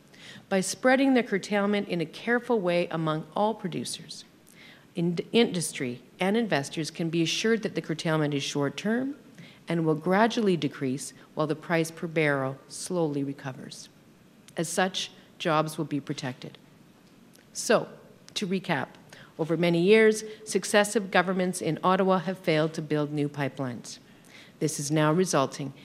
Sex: female